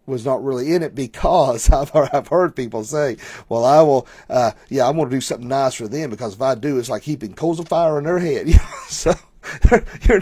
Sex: male